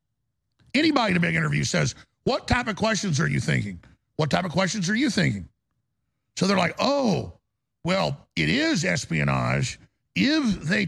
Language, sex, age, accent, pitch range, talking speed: English, male, 50-69, American, 155-220 Hz, 165 wpm